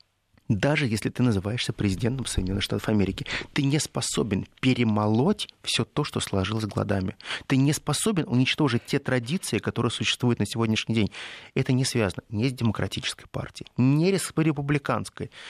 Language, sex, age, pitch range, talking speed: Russian, male, 30-49, 105-140 Hz, 145 wpm